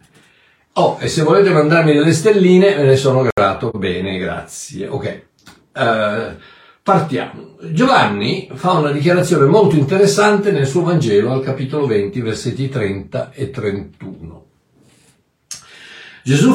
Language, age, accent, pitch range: Italian, 60-79, native, 135-200 Hz